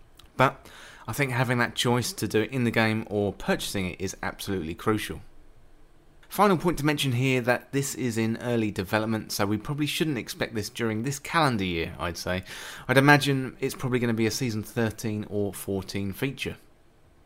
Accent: British